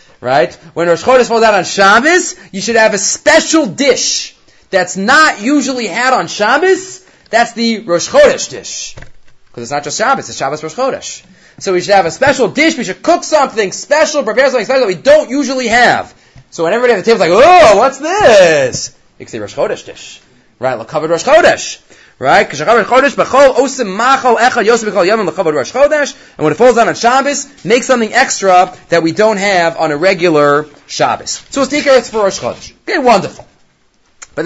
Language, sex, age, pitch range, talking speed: English, male, 30-49, 170-265 Hz, 175 wpm